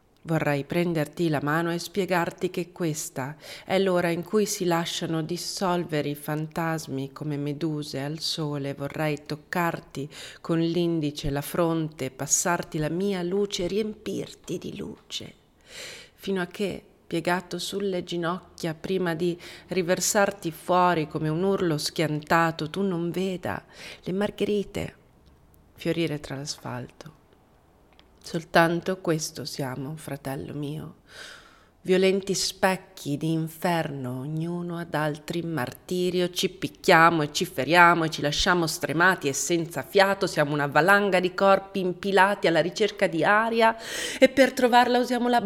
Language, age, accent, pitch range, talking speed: Italian, 40-59, native, 155-195 Hz, 130 wpm